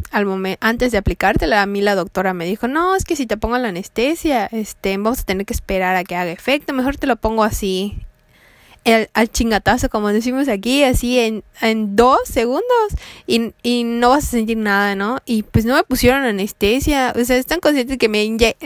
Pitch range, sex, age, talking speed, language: 205-245 Hz, female, 20-39, 210 wpm, Spanish